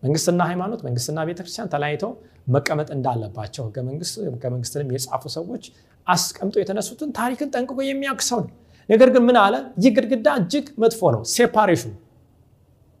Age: 30-49